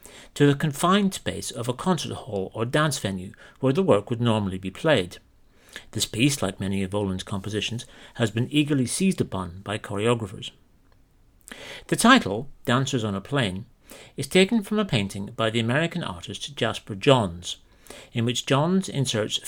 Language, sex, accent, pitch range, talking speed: English, male, British, 100-145 Hz, 165 wpm